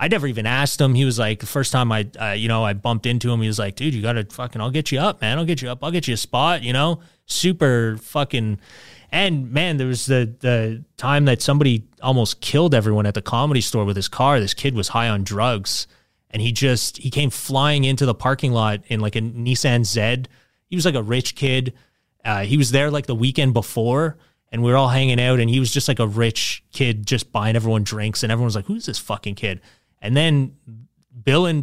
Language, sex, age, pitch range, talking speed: English, male, 30-49, 115-145 Hz, 245 wpm